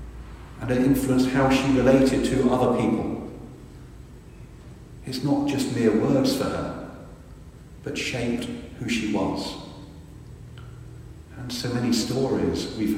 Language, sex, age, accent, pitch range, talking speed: English, male, 50-69, British, 110-130 Hz, 120 wpm